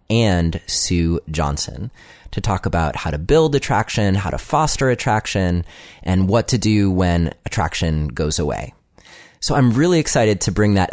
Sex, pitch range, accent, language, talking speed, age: male, 90-120 Hz, American, English, 160 wpm, 30-49